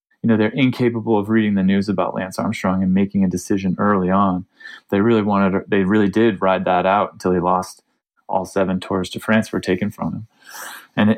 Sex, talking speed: male, 210 wpm